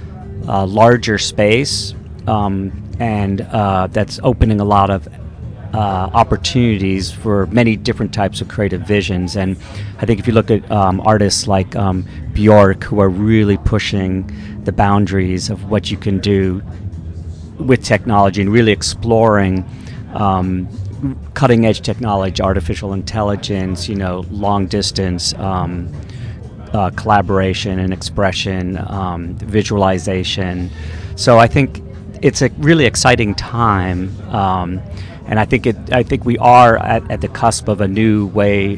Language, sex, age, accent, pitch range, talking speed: English, male, 40-59, American, 95-110 Hz, 135 wpm